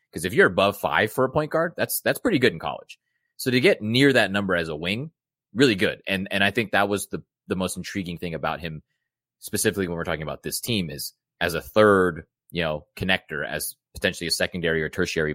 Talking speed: 230 wpm